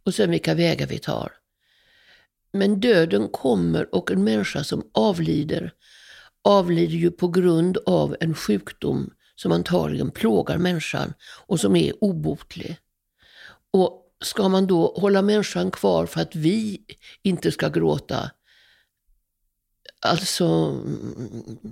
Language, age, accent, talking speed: English, 60-79, Swedish, 120 wpm